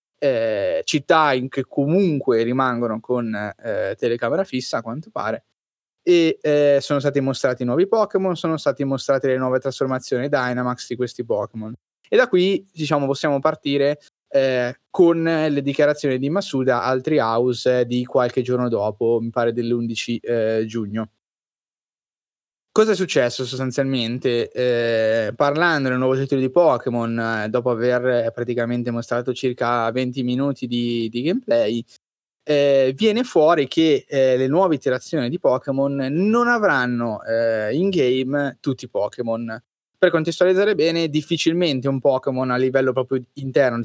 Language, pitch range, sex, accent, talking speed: Italian, 120-145 Hz, male, native, 140 wpm